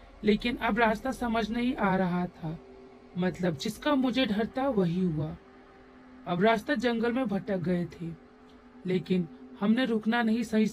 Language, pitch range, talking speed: Hindi, 180-230 Hz, 145 wpm